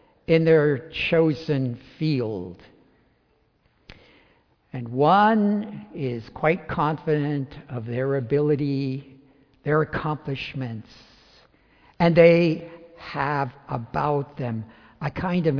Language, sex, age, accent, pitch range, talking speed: English, male, 60-79, American, 145-210 Hz, 85 wpm